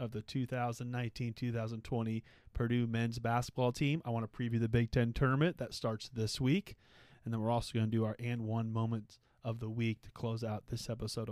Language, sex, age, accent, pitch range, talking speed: English, male, 20-39, American, 115-130 Hz, 195 wpm